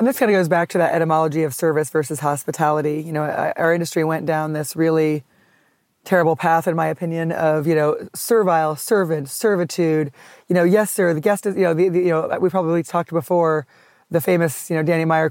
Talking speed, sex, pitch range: 215 wpm, female, 160-190 Hz